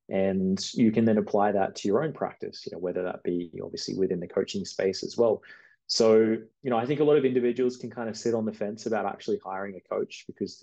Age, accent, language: 20-39, Australian, English